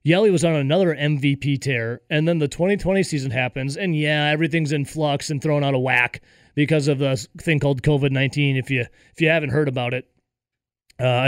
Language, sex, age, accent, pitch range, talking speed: English, male, 30-49, American, 135-170 Hz, 195 wpm